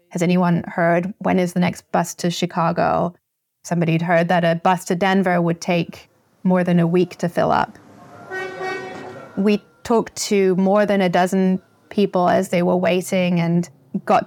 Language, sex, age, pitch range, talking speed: English, female, 20-39, 170-190 Hz, 170 wpm